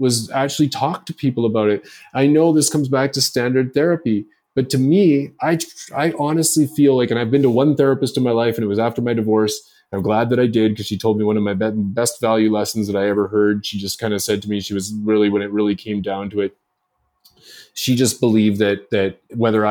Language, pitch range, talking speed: English, 105-135 Hz, 245 wpm